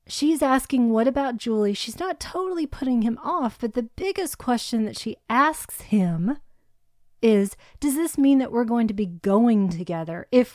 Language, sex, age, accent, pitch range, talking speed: English, female, 30-49, American, 200-255 Hz, 175 wpm